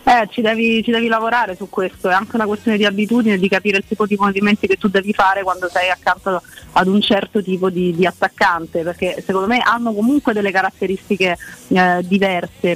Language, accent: Italian, native